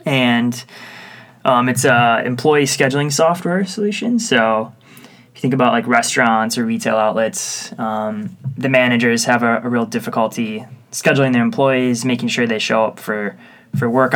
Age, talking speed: 20-39, 155 wpm